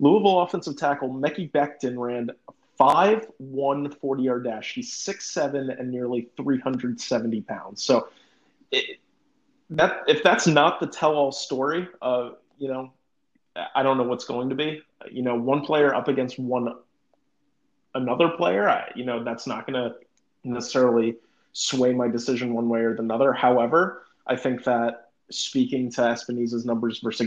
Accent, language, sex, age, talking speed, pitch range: American, English, male, 30-49, 165 wpm, 120-140 Hz